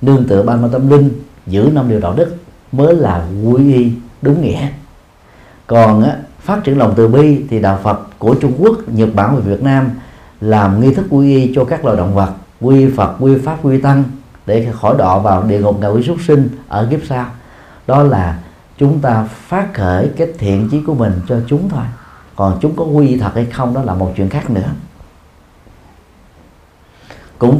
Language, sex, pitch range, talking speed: Vietnamese, male, 100-140 Hz, 200 wpm